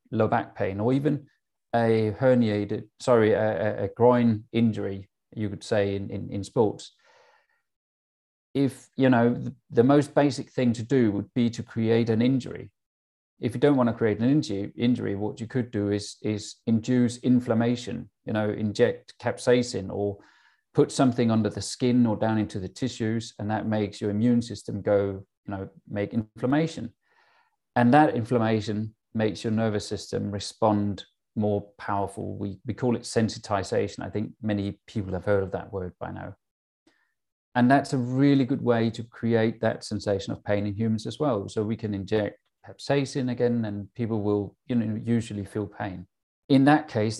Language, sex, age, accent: English, male, 40-59, British